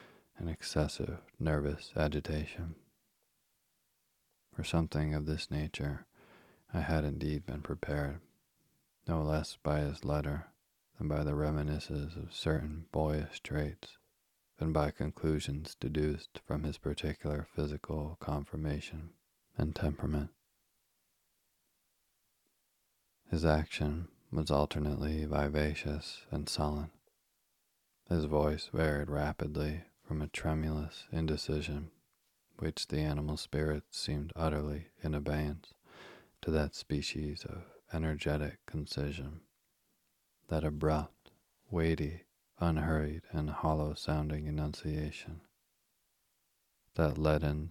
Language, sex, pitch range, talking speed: English, male, 75-80 Hz, 95 wpm